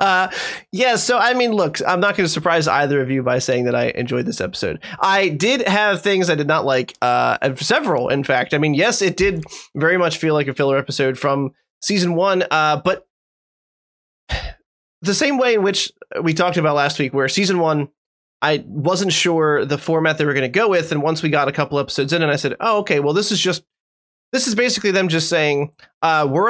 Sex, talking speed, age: male, 225 wpm, 20-39